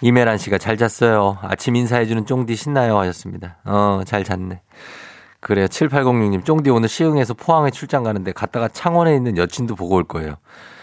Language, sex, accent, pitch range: Korean, male, native, 100-145 Hz